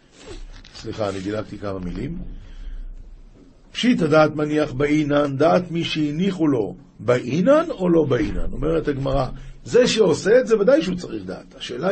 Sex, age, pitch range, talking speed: male, 50-69, 135-190 Hz, 140 wpm